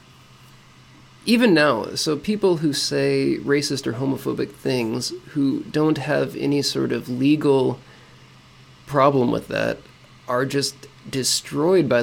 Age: 20-39